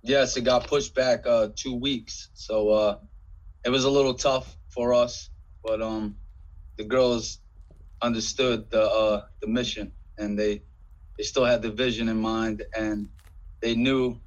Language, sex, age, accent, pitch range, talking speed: English, male, 20-39, American, 105-120 Hz, 160 wpm